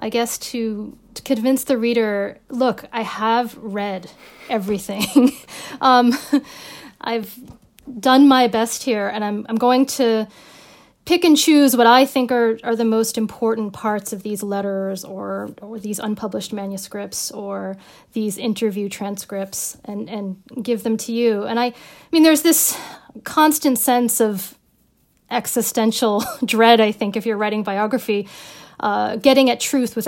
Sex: female